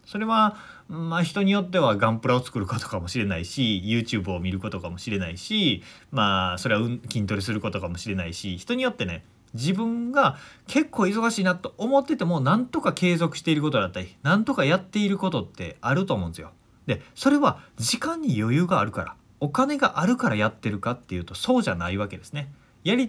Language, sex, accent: Japanese, male, native